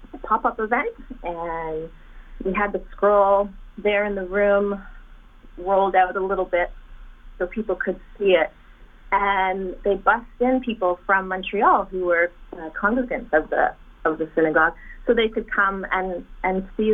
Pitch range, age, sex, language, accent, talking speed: 180-220 Hz, 30-49, female, English, American, 155 wpm